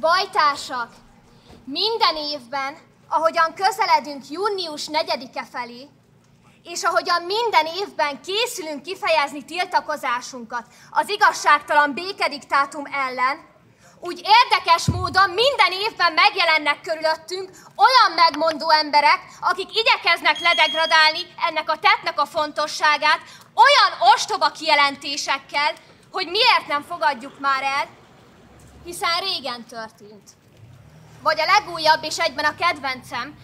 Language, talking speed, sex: Hungarian, 100 wpm, female